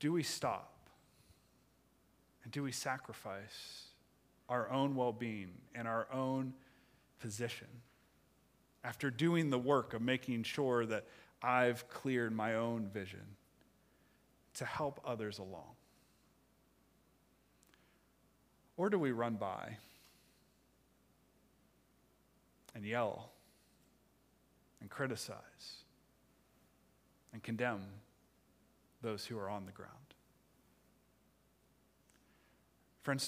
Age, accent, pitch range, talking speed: 40-59, American, 100-125 Hz, 90 wpm